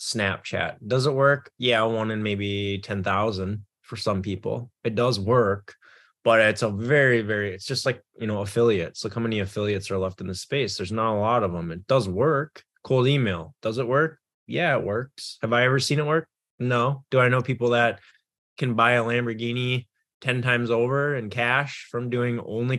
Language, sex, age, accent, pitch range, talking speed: English, male, 20-39, American, 95-120 Hz, 205 wpm